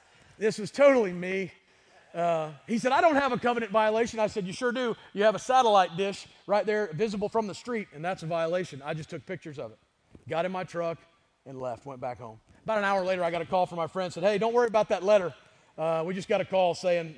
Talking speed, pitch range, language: 255 wpm, 140-195 Hz, English